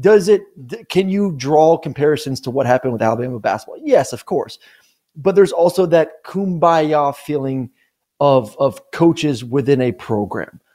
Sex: male